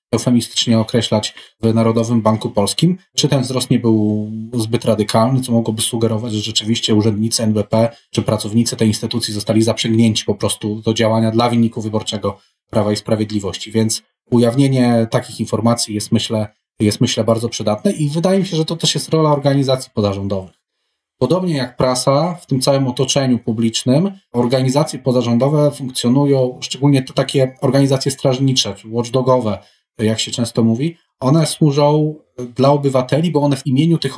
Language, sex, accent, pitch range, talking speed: Polish, male, native, 110-135 Hz, 150 wpm